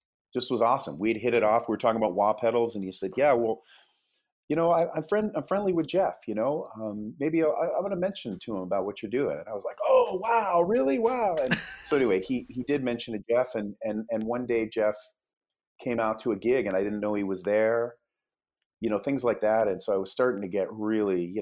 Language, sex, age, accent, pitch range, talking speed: English, male, 40-59, American, 95-120 Hz, 255 wpm